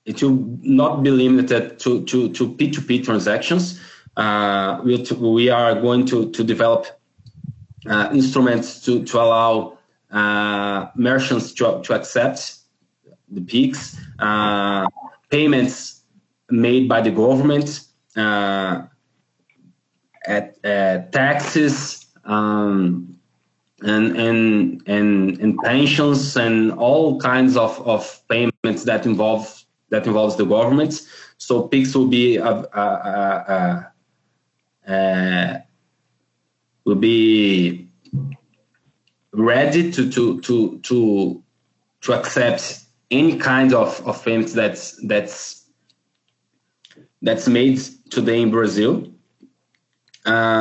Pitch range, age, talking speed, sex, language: 105-130 Hz, 20-39, 105 wpm, male, English